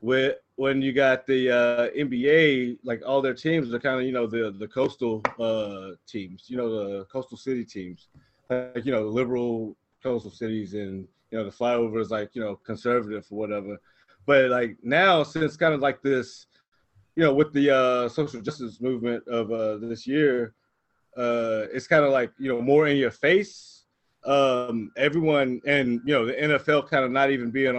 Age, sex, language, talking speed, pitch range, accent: 20-39, male, English, 190 wpm, 115-145 Hz, American